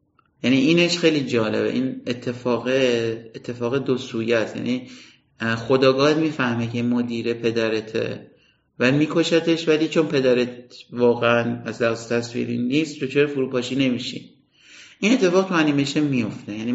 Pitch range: 120-145 Hz